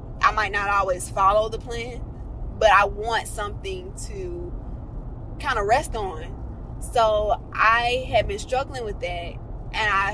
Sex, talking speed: female, 150 wpm